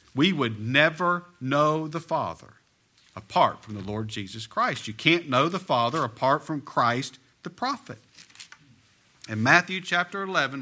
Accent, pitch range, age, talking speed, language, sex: American, 105-150 Hz, 50-69, 145 wpm, English, male